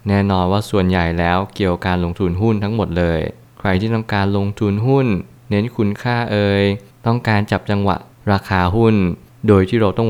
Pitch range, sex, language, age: 95-115 Hz, male, Thai, 20-39